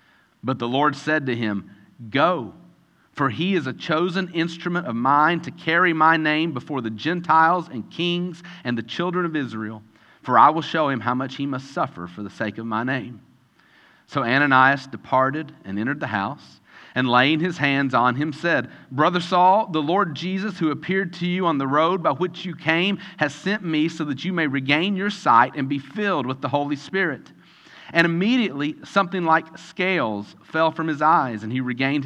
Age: 40-59